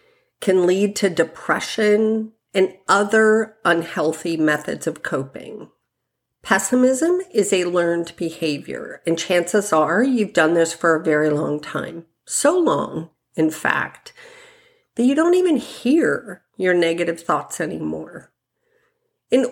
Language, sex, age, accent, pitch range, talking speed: English, female, 50-69, American, 165-255 Hz, 125 wpm